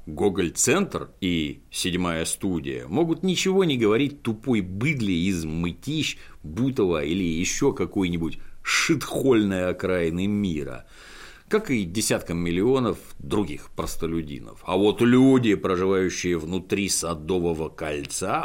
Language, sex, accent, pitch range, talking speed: Russian, male, native, 85-145 Hz, 105 wpm